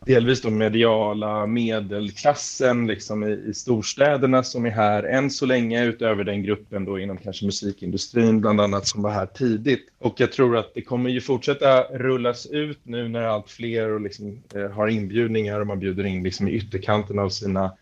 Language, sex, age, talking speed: Swedish, male, 20-39, 185 wpm